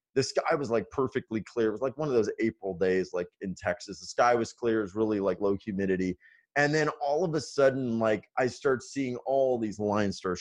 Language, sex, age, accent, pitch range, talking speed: English, male, 30-49, American, 95-120 Hz, 235 wpm